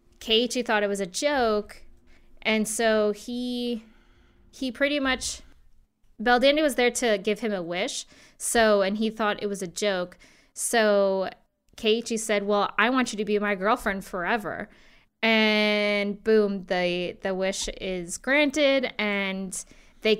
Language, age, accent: English, 20-39, American